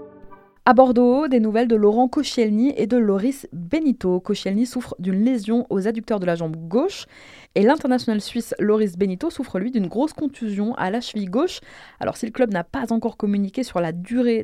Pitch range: 195-255 Hz